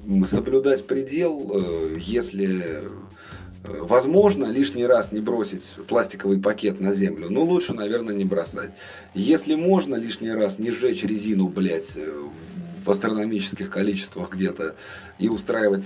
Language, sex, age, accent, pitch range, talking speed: Russian, male, 30-49, native, 100-125 Hz, 115 wpm